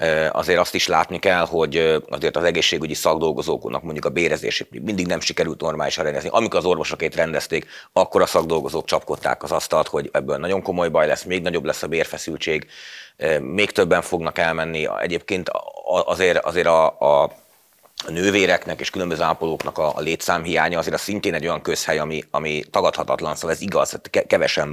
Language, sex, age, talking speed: Hungarian, male, 30-49, 165 wpm